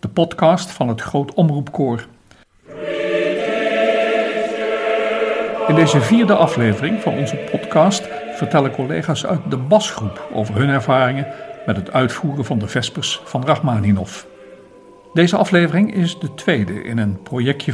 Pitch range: 115-165 Hz